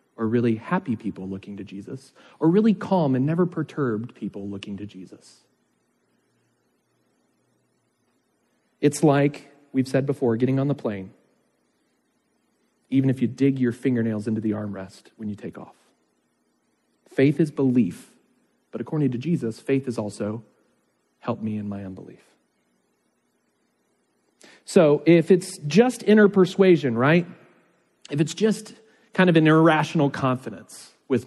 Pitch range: 125-195 Hz